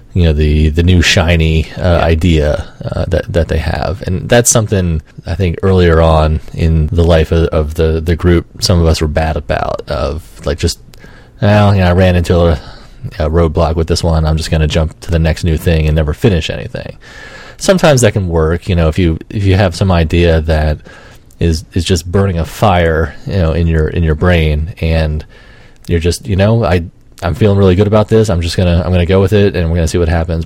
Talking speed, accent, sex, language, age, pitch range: 235 wpm, American, male, English, 30-49, 80-100 Hz